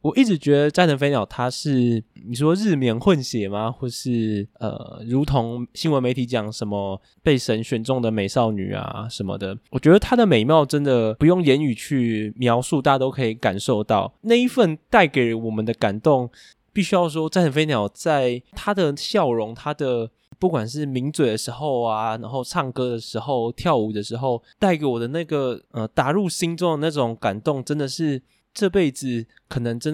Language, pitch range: Chinese, 110-145 Hz